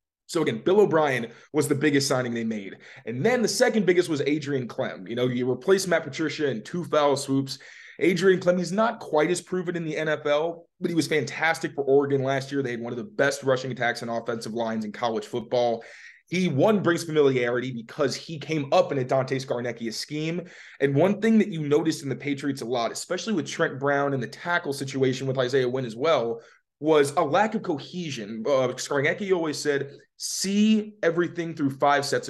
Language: English